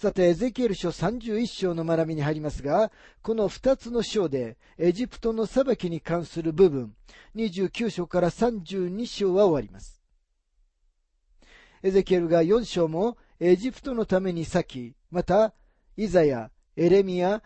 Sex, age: male, 40-59